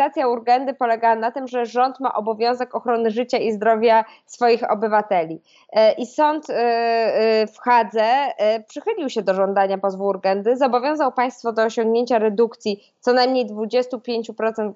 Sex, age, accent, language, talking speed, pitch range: female, 20-39, native, Polish, 130 wpm, 210-245 Hz